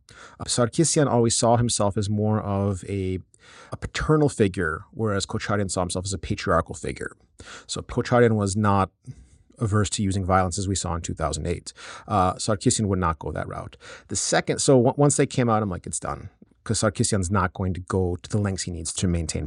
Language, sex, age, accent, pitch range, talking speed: English, male, 30-49, American, 95-120 Hz, 195 wpm